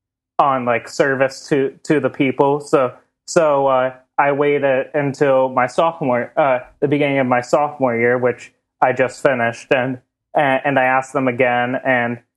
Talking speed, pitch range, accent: 160 wpm, 120-140 Hz, American